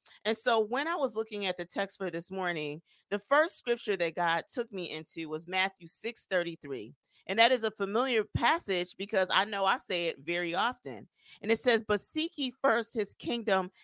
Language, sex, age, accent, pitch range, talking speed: English, female, 40-59, American, 180-245 Hz, 200 wpm